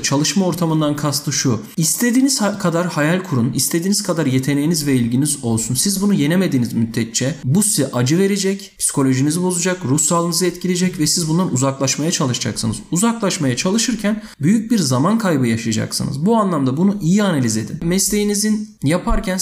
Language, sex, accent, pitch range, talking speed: Turkish, male, native, 130-180 Hz, 145 wpm